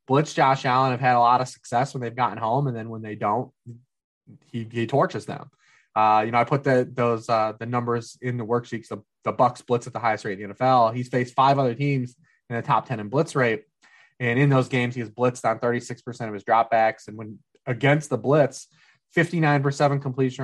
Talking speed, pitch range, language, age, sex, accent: 225 wpm, 120-140 Hz, English, 20-39, male, American